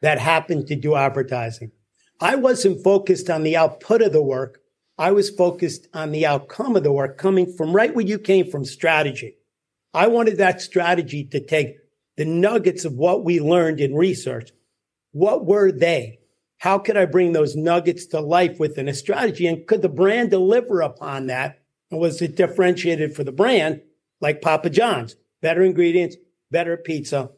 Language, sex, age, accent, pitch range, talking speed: English, male, 50-69, American, 145-185 Hz, 175 wpm